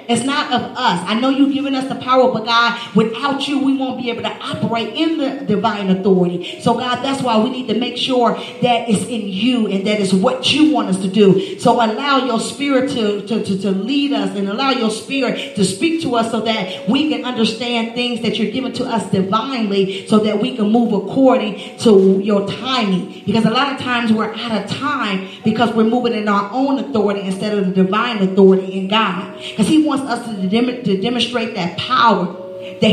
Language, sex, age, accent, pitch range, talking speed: English, female, 40-59, American, 210-275 Hz, 215 wpm